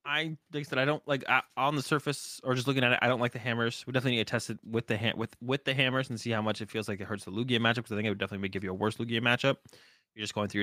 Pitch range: 105-145 Hz